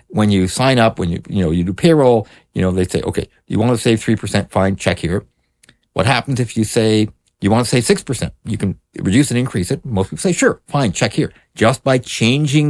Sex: male